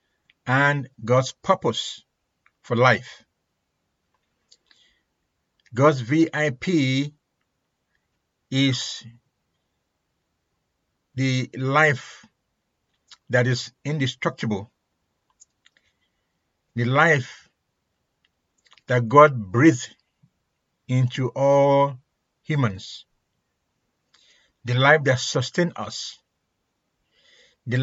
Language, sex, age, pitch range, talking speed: English, male, 60-79, 120-145 Hz, 60 wpm